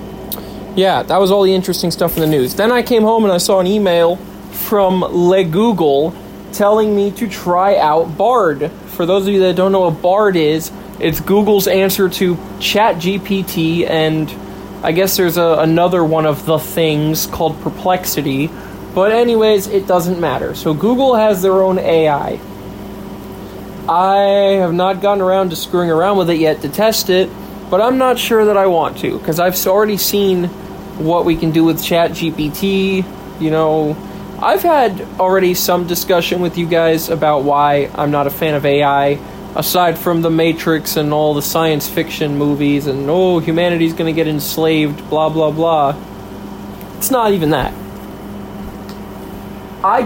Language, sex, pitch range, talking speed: English, male, 155-195 Hz, 170 wpm